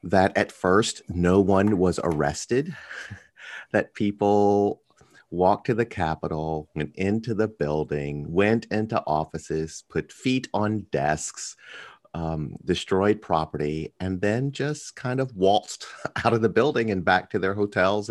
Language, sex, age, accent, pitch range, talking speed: English, male, 40-59, American, 80-110 Hz, 140 wpm